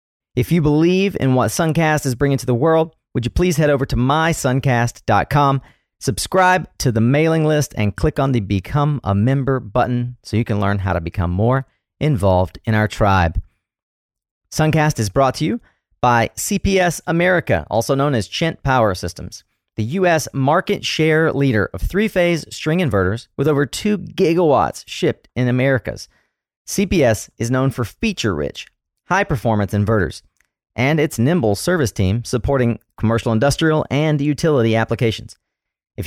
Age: 40-59